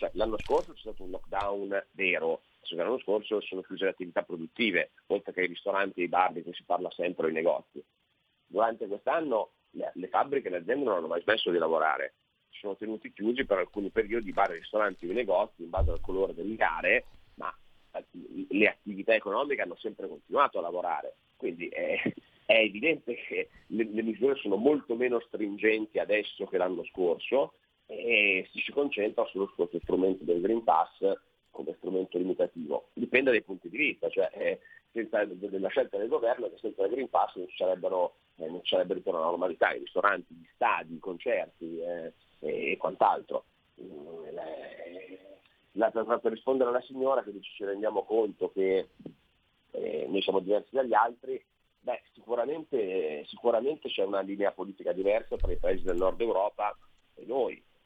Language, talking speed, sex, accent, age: Italian, 170 wpm, male, native, 40-59